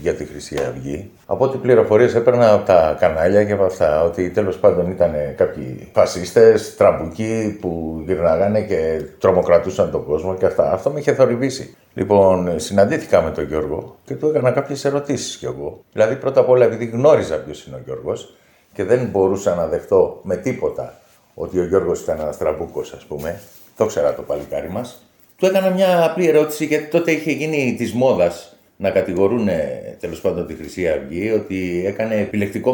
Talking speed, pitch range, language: 175 wpm, 95-160 Hz, Greek